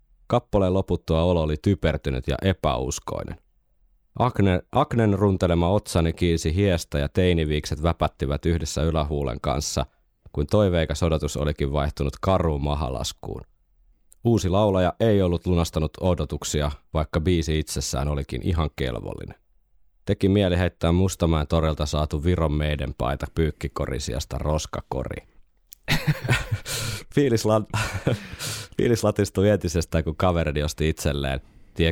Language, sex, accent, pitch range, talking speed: Finnish, male, native, 75-90 Hz, 110 wpm